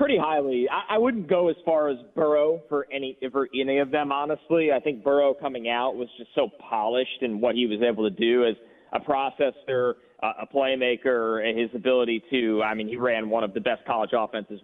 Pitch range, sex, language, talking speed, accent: 115-140 Hz, male, English, 215 wpm, American